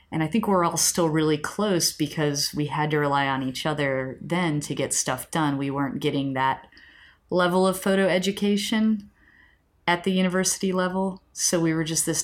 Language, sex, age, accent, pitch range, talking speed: English, female, 30-49, American, 140-170 Hz, 185 wpm